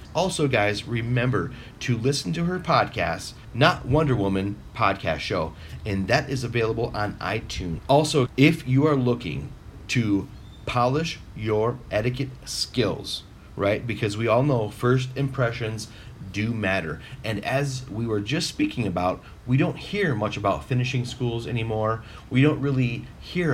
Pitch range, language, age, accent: 100-130 Hz, English, 30-49, American